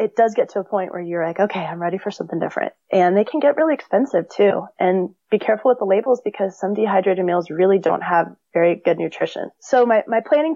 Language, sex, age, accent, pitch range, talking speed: English, female, 20-39, American, 180-210 Hz, 240 wpm